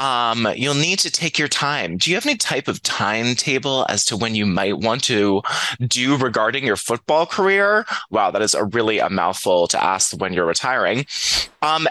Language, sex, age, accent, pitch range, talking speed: English, male, 20-39, American, 120-165 Hz, 195 wpm